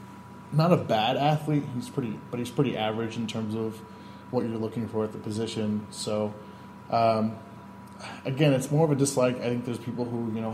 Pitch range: 110-125 Hz